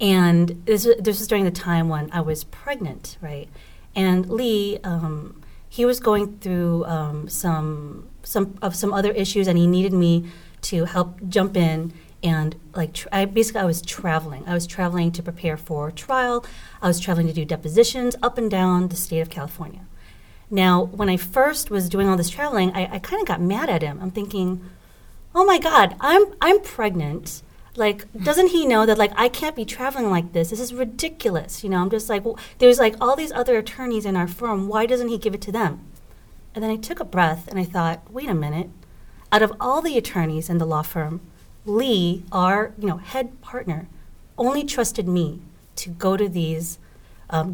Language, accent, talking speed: English, American, 200 wpm